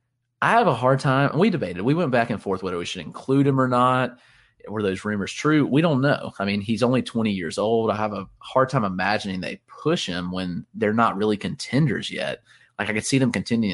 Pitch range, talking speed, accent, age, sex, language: 100-130 Hz, 235 wpm, American, 30-49, male, English